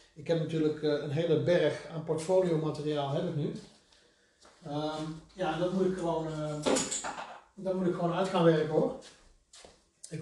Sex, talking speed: male, 135 wpm